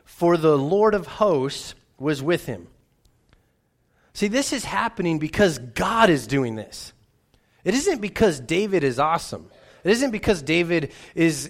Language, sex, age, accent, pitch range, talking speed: English, male, 30-49, American, 135-185 Hz, 145 wpm